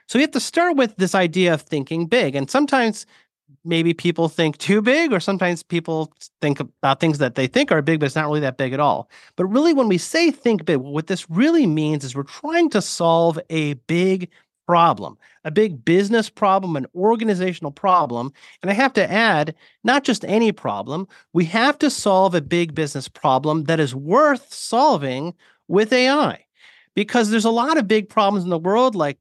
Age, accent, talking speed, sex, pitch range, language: 30-49, American, 200 wpm, male, 155-220 Hz, English